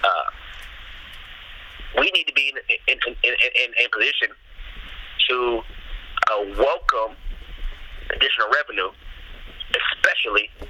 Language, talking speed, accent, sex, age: English, 105 wpm, American, male, 30-49